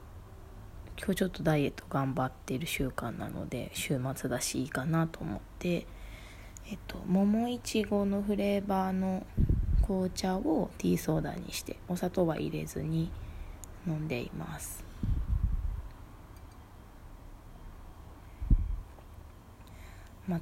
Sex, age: female, 20-39